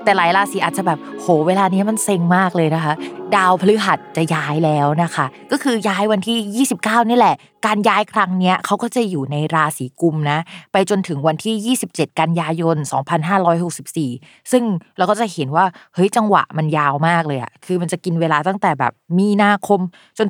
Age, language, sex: 20-39, Thai, female